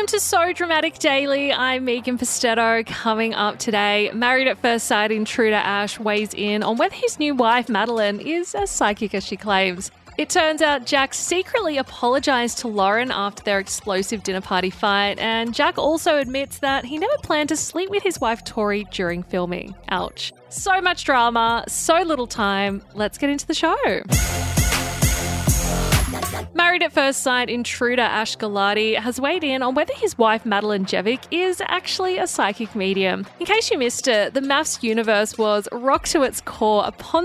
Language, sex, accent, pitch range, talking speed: English, female, Australian, 210-300 Hz, 175 wpm